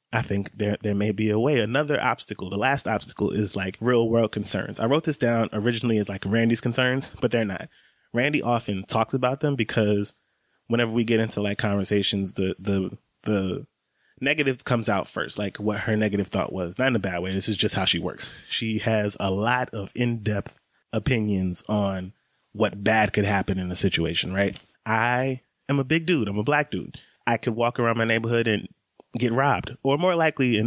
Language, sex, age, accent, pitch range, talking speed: English, male, 20-39, American, 105-125 Hz, 205 wpm